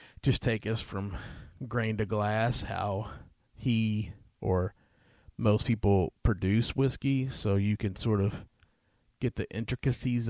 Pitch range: 95-115 Hz